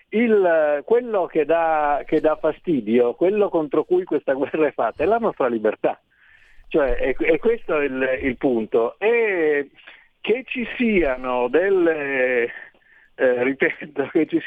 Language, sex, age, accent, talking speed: Italian, male, 50-69, native, 110 wpm